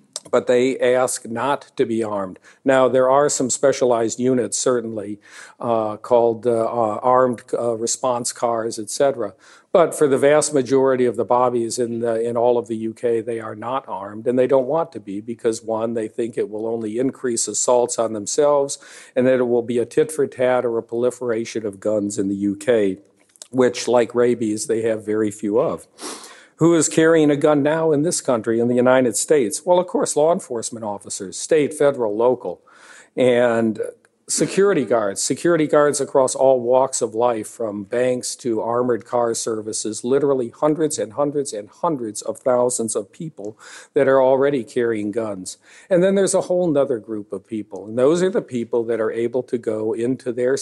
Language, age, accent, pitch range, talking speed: English, 50-69, American, 115-135 Hz, 185 wpm